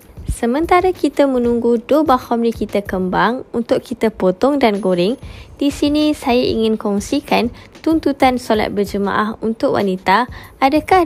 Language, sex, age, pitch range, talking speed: Malay, female, 10-29, 205-260 Hz, 125 wpm